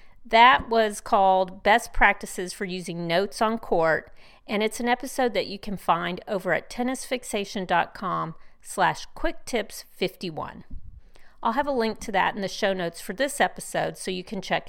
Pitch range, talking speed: 190-255 Hz, 160 wpm